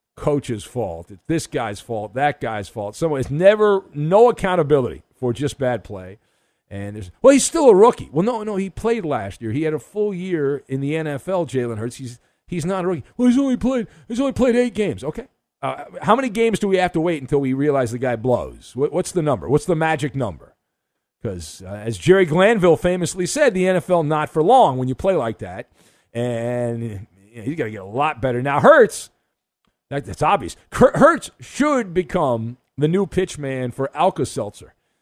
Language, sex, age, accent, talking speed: English, male, 40-59, American, 205 wpm